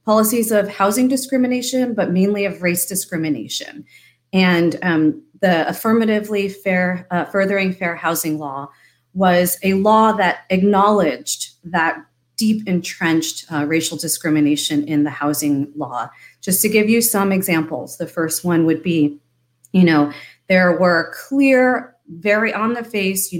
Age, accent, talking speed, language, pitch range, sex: 30-49, American, 140 wpm, English, 155-195 Hz, female